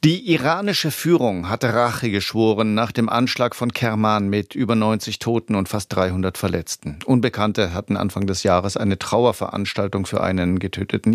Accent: German